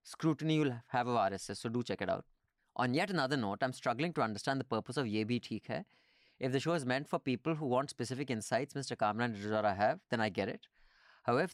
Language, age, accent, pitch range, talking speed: English, 30-49, Indian, 110-145 Hz, 225 wpm